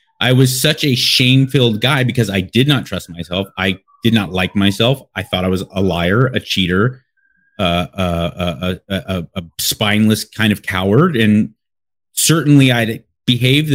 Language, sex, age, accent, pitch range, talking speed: English, male, 30-49, American, 100-130 Hz, 165 wpm